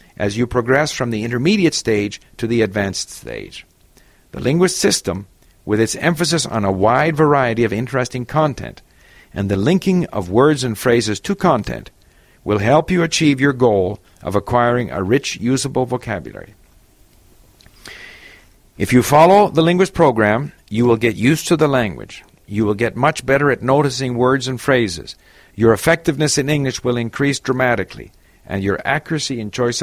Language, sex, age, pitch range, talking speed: English, male, 50-69, 105-150 Hz, 160 wpm